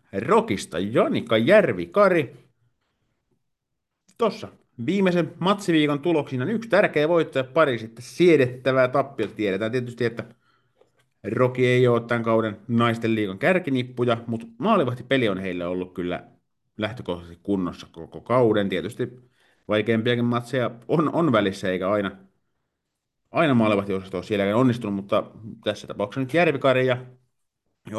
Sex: male